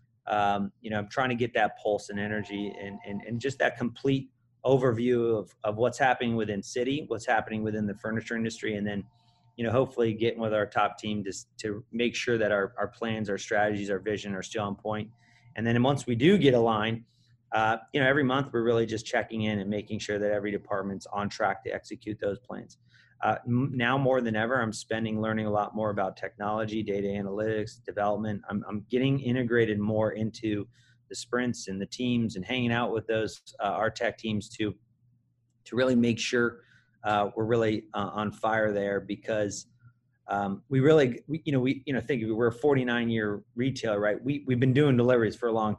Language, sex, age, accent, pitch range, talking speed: English, male, 30-49, American, 105-125 Hz, 210 wpm